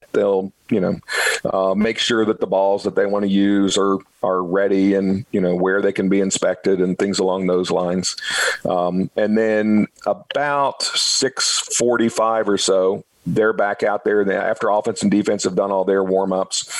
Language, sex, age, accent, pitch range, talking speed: English, male, 40-59, American, 95-120 Hz, 185 wpm